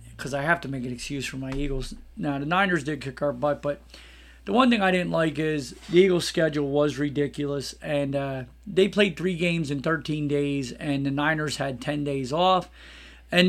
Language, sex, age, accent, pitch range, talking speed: English, male, 40-59, American, 140-175 Hz, 210 wpm